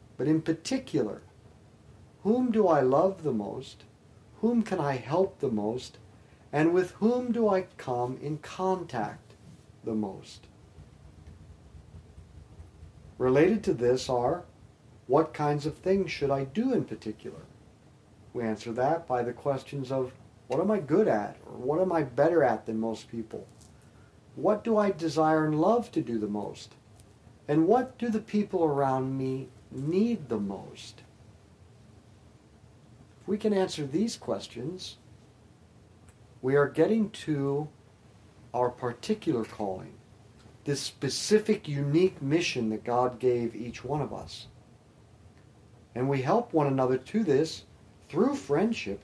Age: 50-69